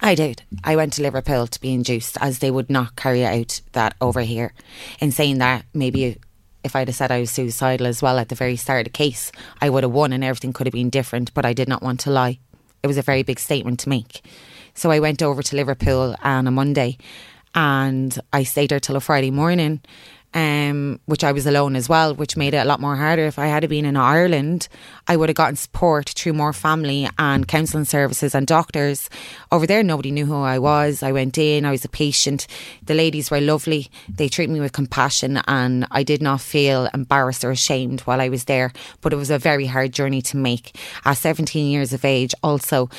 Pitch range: 130-150 Hz